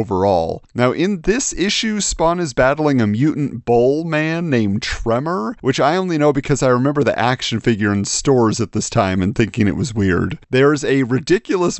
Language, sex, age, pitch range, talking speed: English, male, 40-59, 120-190 Hz, 190 wpm